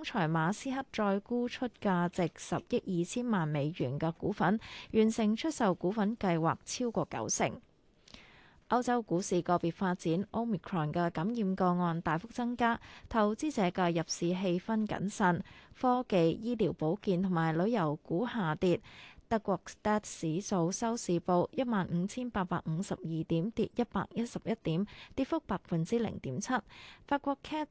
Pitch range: 170-225 Hz